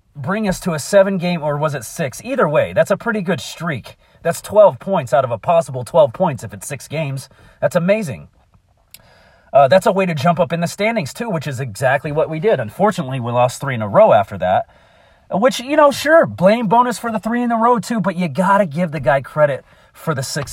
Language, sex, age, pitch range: English, male, 40-59, 135-190 Hz